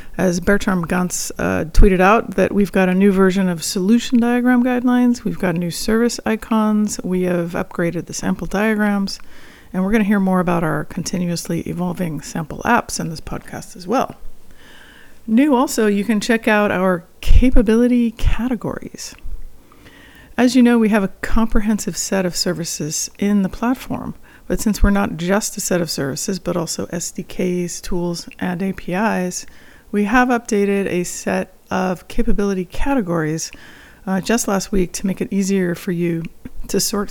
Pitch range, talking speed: 180-220 Hz, 165 wpm